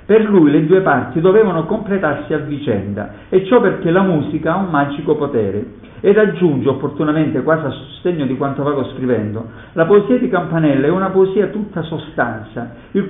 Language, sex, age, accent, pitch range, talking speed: Italian, male, 50-69, native, 125-175 Hz, 175 wpm